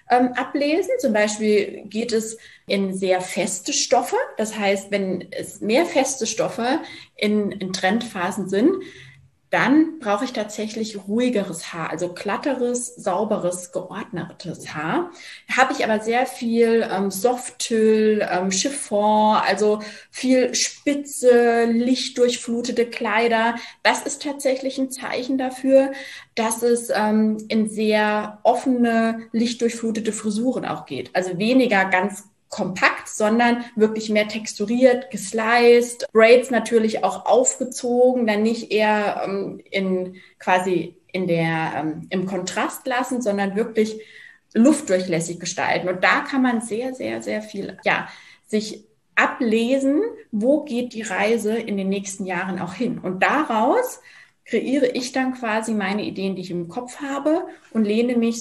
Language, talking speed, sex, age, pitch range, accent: German, 130 wpm, female, 20-39, 195-250 Hz, German